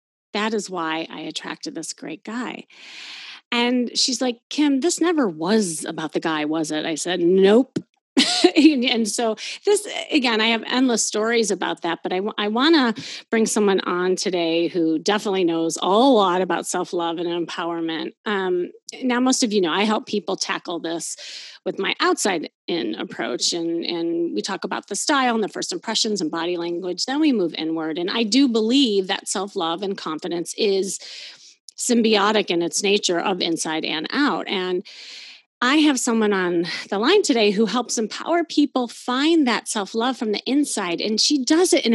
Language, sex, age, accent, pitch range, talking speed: English, female, 30-49, American, 180-250 Hz, 175 wpm